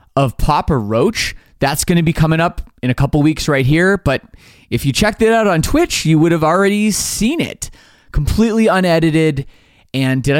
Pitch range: 135-210 Hz